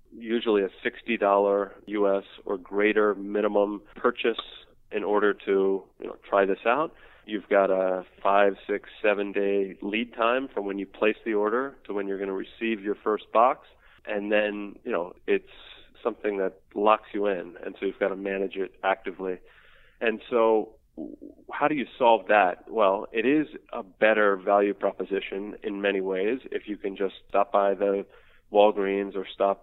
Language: English